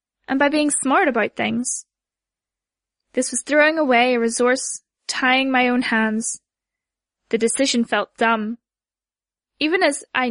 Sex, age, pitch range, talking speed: female, 10-29, 225-270 Hz, 135 wpm